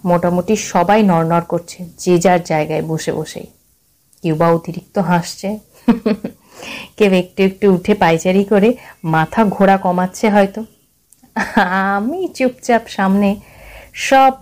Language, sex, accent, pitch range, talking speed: Bengali, female, native, 160-235 Hz, 110 wpm